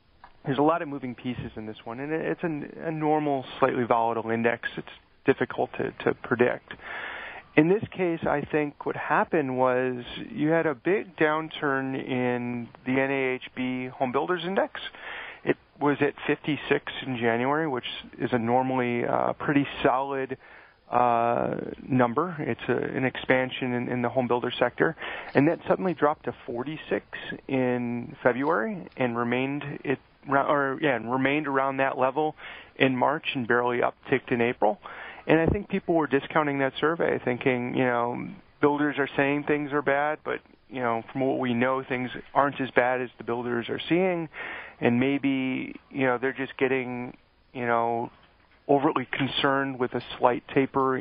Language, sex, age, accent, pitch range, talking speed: English, male, 40-59, American, 125-145 Hz, 160 wpm